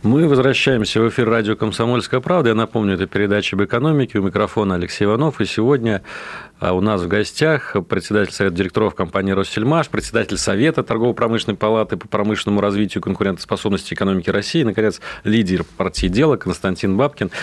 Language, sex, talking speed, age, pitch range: Russian, male, 155 wpm, 40-59, 100-125 Hz